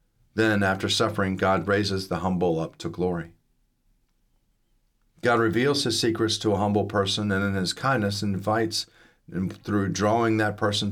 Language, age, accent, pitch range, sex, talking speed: English, 40-59, American, 95-115 Hz, male, 155 wpm